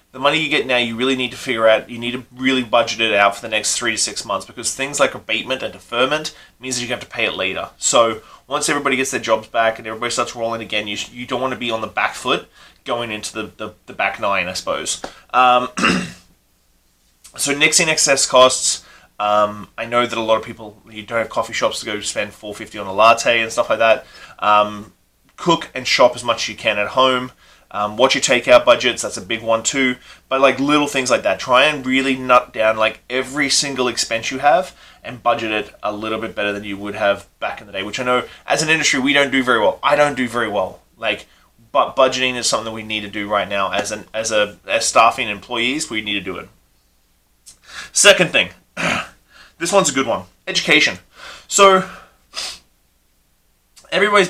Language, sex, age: English, male, 20-39